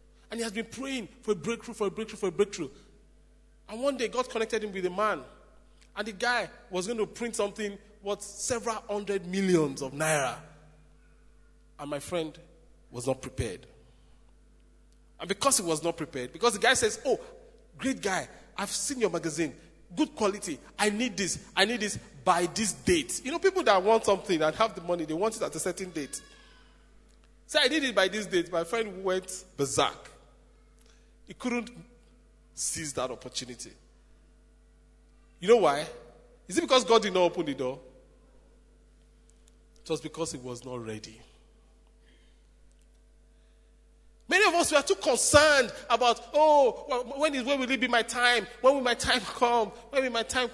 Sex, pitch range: male, 165-240 Hz